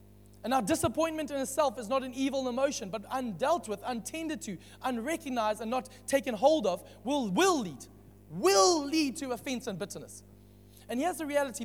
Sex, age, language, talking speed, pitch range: male, 20-39, English, 175 wpm, 205-285 Hz